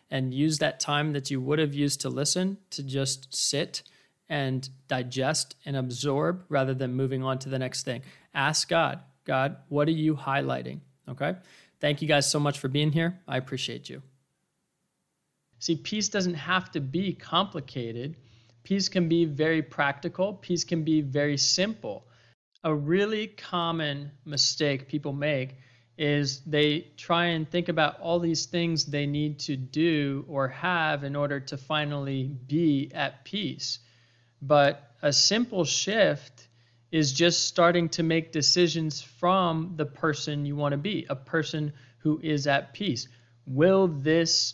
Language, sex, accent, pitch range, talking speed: English, male, American, 135-165 Hz, 155 wpm